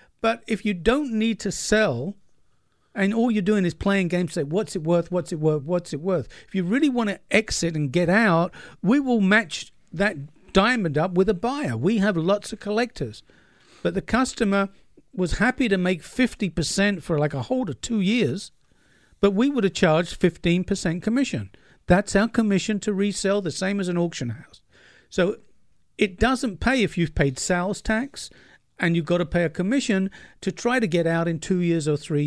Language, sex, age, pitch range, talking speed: English, male, 50-69, 165-215 Hz, 195 wpm